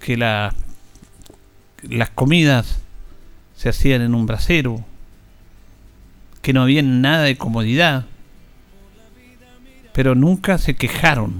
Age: 50-69